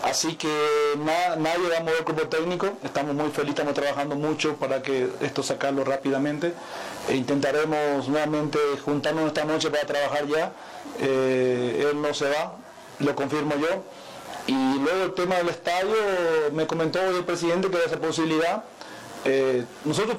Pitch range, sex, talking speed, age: 150-175 Hz, male, 160 wpm, 40-59